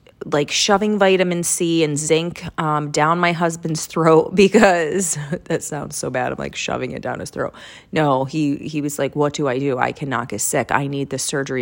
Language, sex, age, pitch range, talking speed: English, female, 30-49, 145-185 Hz, 205 wpm